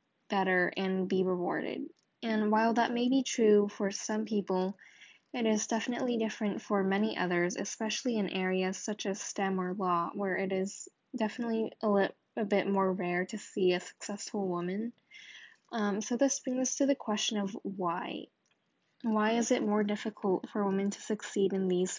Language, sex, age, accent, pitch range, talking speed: English, female, 10-29, American, 190-220 Hz, 170 wpm